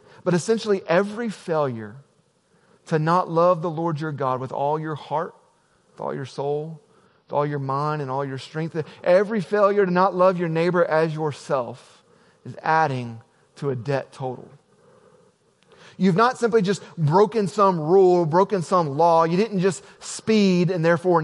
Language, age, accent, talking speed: English, 30-49, American, 165 wpm